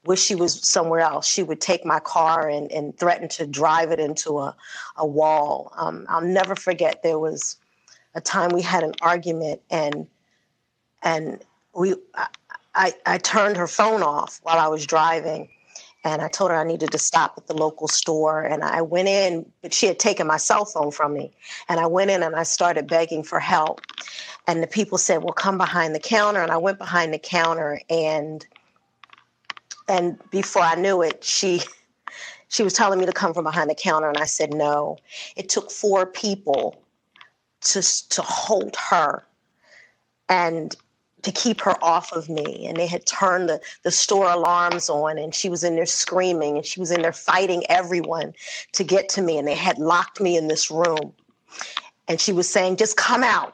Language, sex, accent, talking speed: English, female, American, 195 wpm